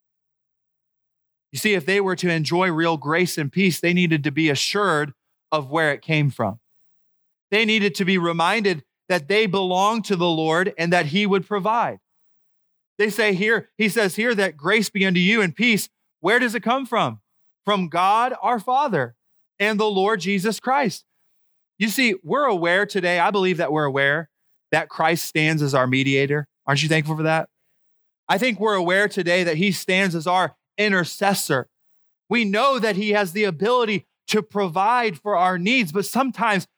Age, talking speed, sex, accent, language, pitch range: 30-49, 180 wpm, male, American, English, 160-215 Hz